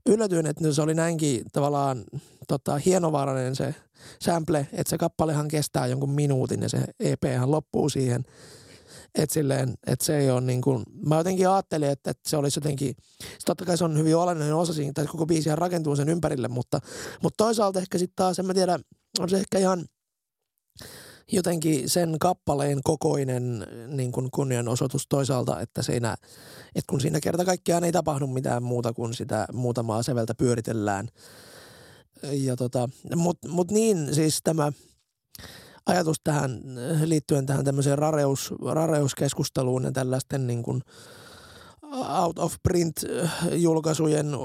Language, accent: Finnish, native